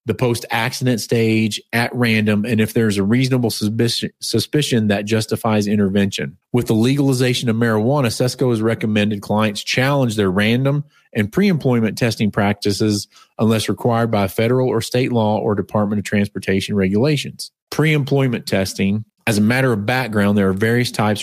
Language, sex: English, male